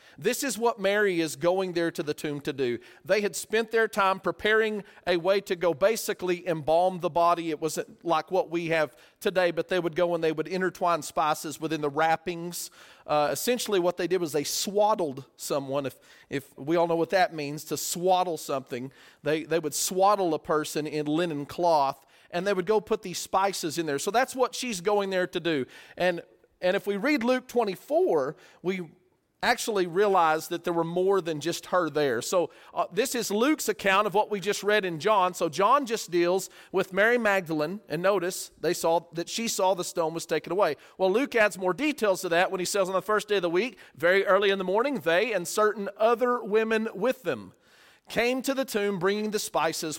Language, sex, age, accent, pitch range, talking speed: English, male, 40-59, American, 160-205 Hz, 210 wpm